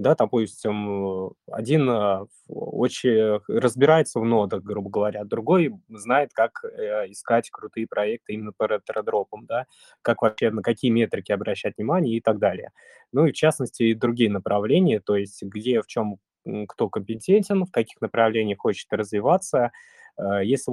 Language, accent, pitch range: Russian, native, 105-125 Hz